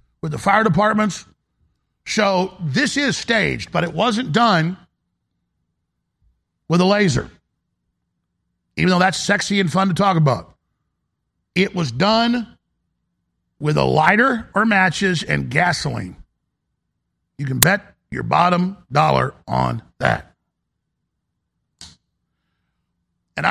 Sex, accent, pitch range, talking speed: male, American, 155-195 Hz, 110 wpm